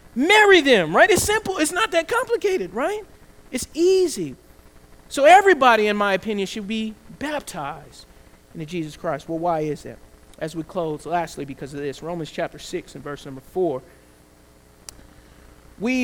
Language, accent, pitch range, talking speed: English, American, 145-205 Hz, 155 wpm